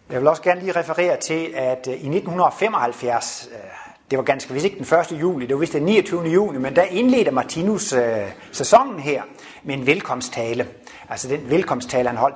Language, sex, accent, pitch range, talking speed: Danish, male, native, 130-205 Hz, 190 wpm